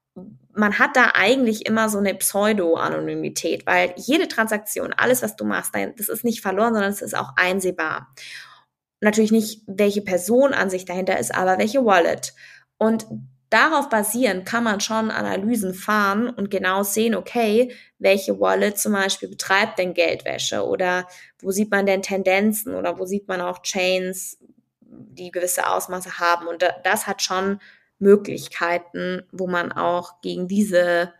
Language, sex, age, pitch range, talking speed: German, female, 20-39, 180-215 Hz, 155 wpm